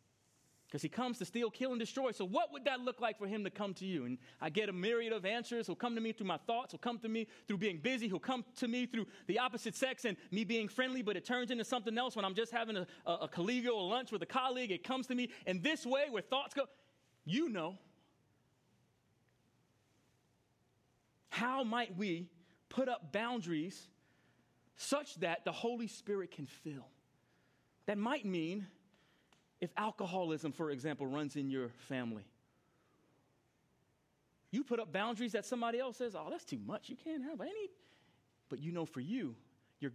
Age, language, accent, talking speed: 30-49, English, American, 200 wpm